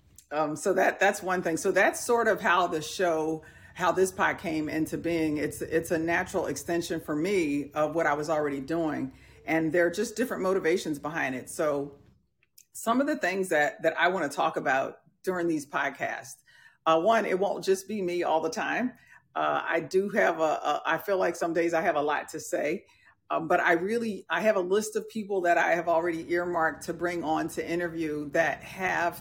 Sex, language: female, English